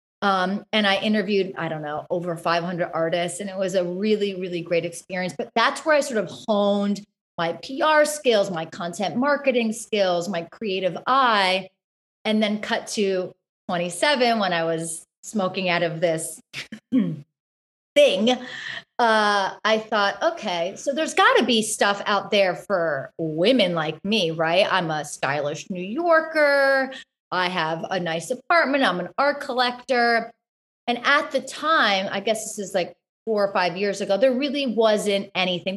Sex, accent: female, American